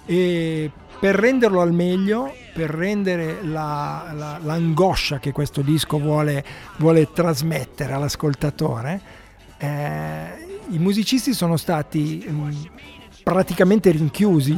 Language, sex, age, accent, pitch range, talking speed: Italian, male, 50-69, native, 155-190 Hz, 85 wpm